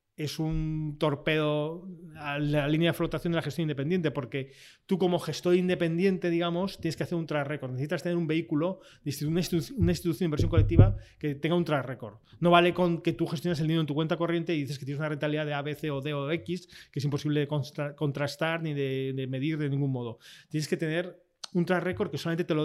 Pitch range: 145-175 Hz